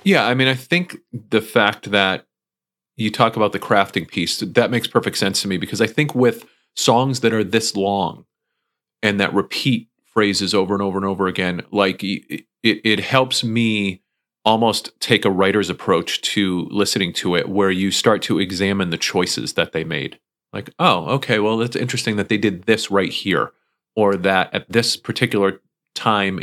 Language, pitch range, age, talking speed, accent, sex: English, 95-115 Hz, 30-49, 185 wpm, American, male